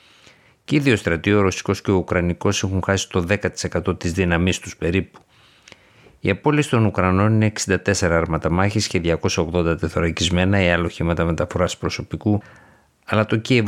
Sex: male